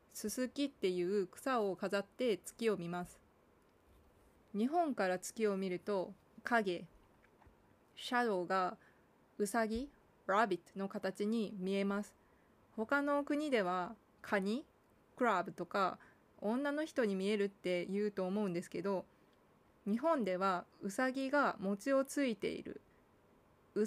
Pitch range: 190-260 Hz